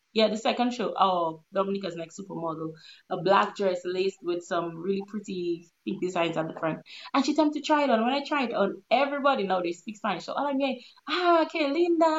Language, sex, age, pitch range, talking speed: English, female, 20-39, 195-275 Hz, 215 wpm